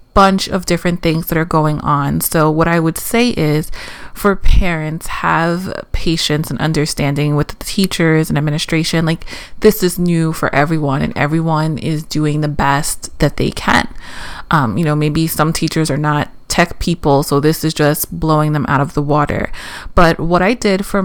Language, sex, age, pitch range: English, female, 30-49, 155-190 Hz